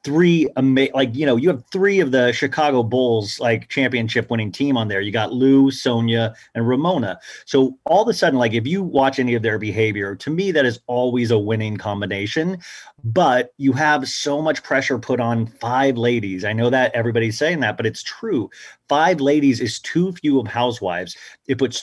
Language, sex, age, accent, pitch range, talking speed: English, male, 30-49, American, 115-140 Hz, 200 wpm